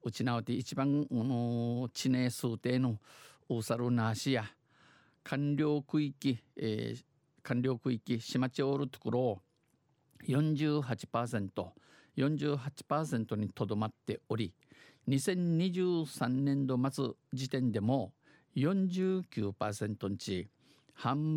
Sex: male